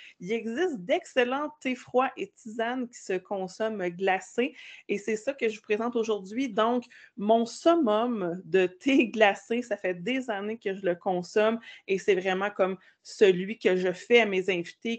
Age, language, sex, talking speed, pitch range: 30-49, French, female, 175 wpm, 200-255 Hz